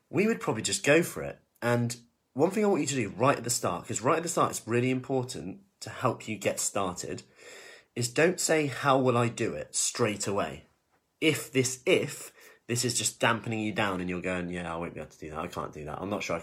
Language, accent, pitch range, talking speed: English, British, 100-130 Hz, 255 wpm